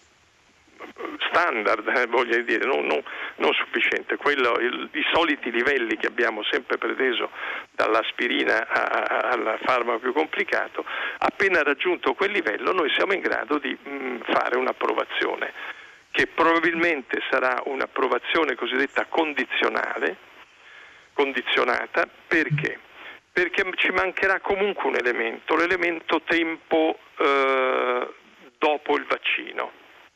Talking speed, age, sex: 105 wpm, 50-69, male